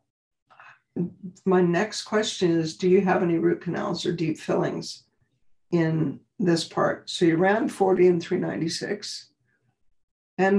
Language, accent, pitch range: English, American, 170-195 Hz